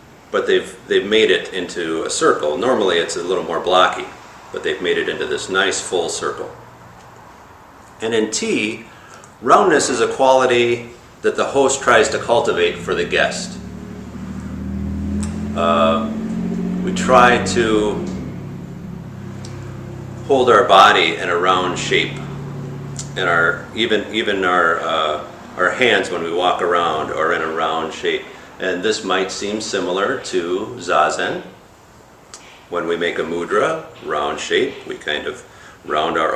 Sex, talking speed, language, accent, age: male, 140 wpm, English, American, 40-59